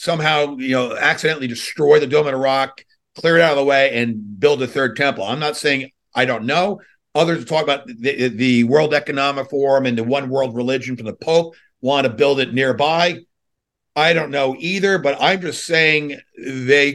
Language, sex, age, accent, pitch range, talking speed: English, male, 50-69, American, 130-160 Hz, 200 wpm